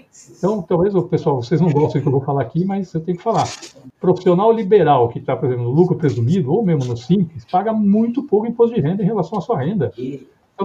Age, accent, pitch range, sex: 60-79, Brazilian, 140-195 Hz, male